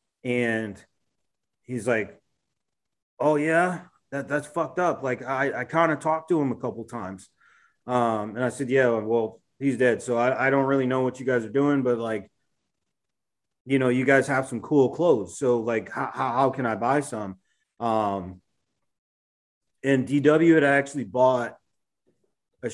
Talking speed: 175 wpm